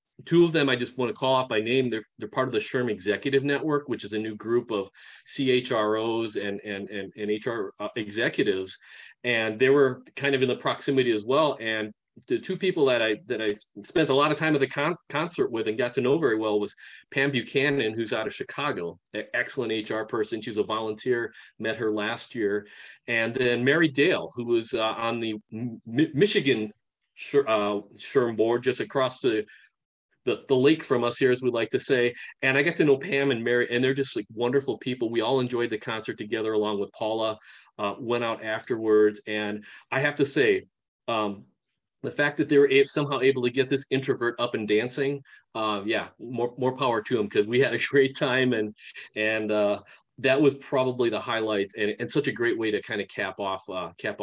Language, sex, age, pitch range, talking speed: English, male, 40-59, 110-135 Hz, 210 wpm